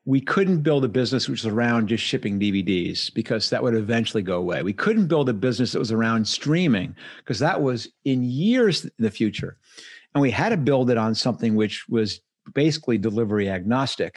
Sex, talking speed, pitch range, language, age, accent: male, 200 wpm, 105-150 Hz, English, 50-69, American